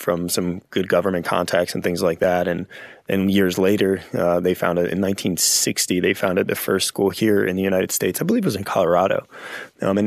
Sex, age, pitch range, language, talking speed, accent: male, 20-39, 90-110 Hz, English, 220 wpm, American